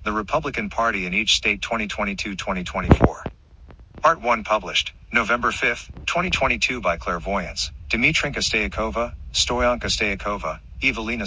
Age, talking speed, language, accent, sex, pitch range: 50-69, 110 wpm, English, American, male, 80-105 Hz